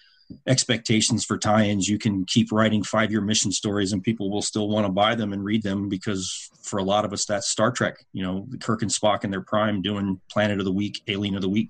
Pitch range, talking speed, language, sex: 105-125 Hz, 240 wpm, English, male